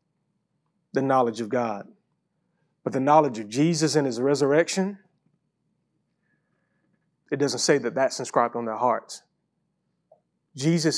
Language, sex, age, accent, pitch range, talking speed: English, male, 30-49, American, 115-150 Hz, 120 wpm